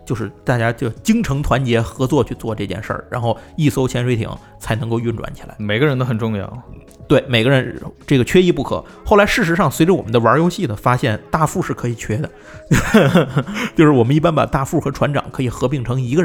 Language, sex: Chinese, male